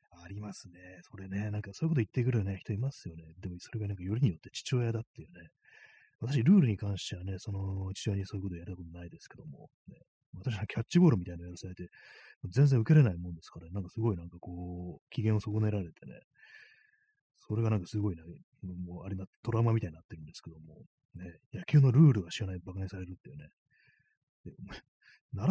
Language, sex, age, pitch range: Japanese, male, 30-49, 90-130 Hz